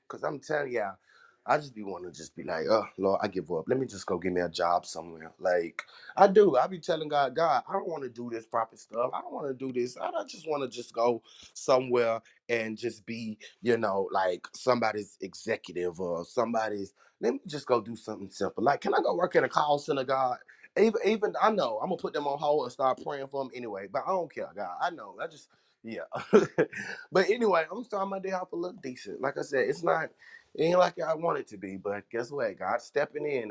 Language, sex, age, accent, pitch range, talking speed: English, male, 20-39, American, 110-150 Hz, 245 wpm